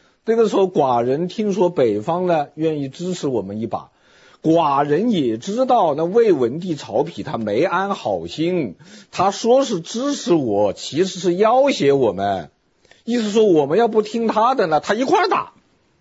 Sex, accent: male, native